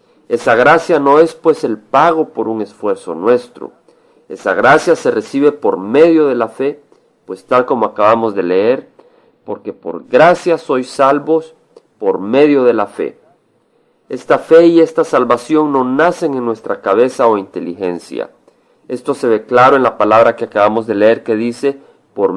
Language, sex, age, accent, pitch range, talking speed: Spanish, male, 40-59, Mexican, 115-150 Hz, 165 wpm